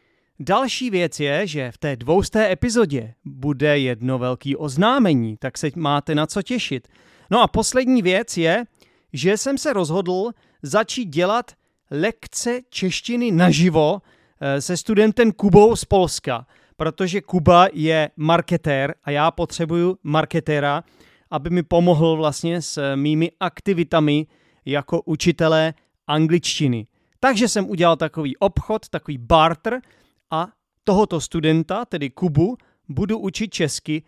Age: 30-49